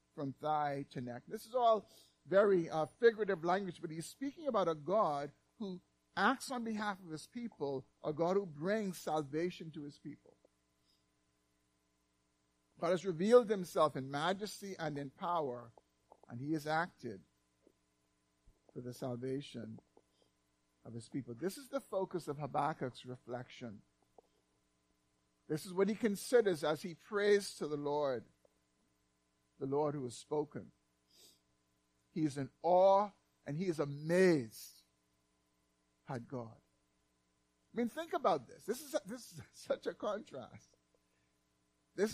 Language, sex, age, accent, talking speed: English, male, 50-69, American, 135 wpm